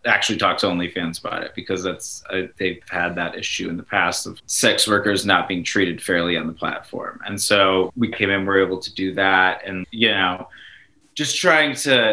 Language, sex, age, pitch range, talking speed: English, male, 20-39, 100-125 Hz, 215 wpm